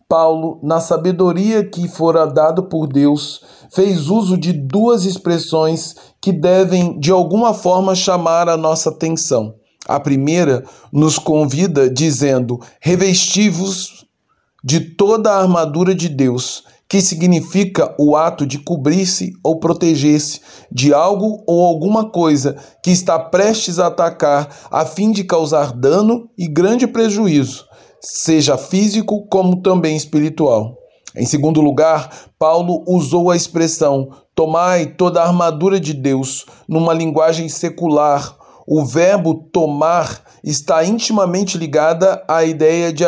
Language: Portuguese